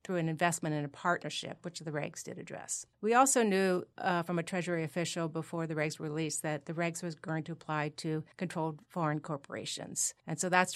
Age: 40-59